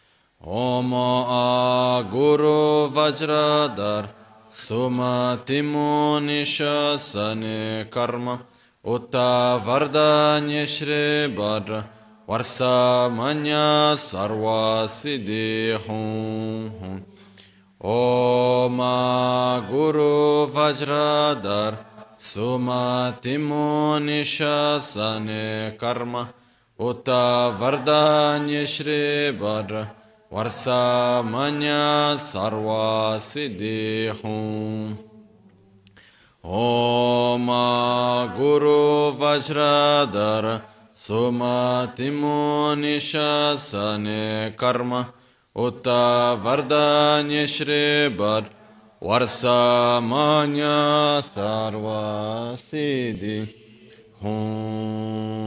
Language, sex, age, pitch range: Italian, male, 20-39, 110-145 Hz